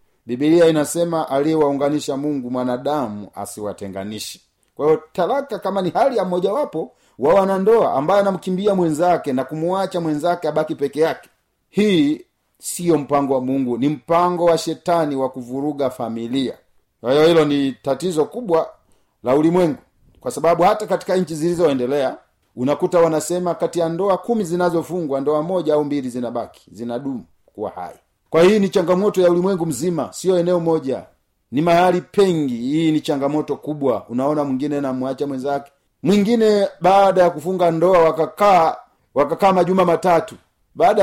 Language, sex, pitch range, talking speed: Swahili, male, 145-185 Hz, 145 wpm